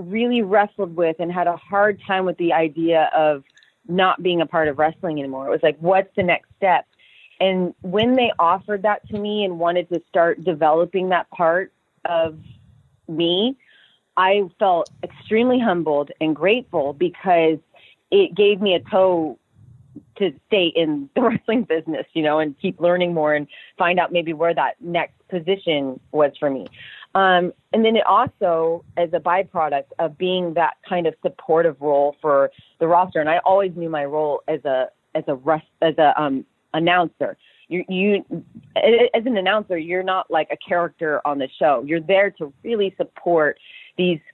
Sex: female